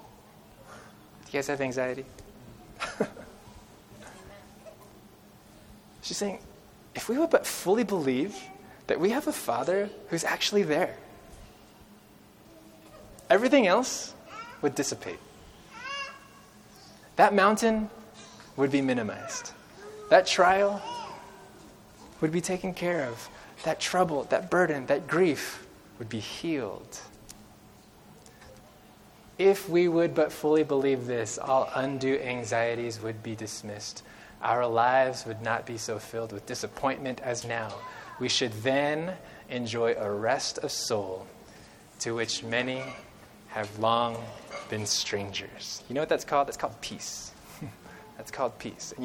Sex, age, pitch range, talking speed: male, 20-39, 110-160 Hz, 115 wpm